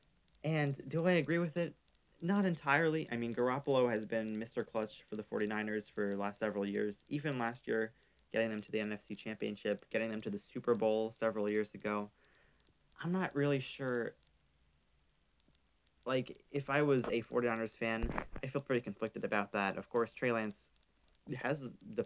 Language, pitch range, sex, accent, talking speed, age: English, 100-125 Hz, male, American, 175 wpm, 20-39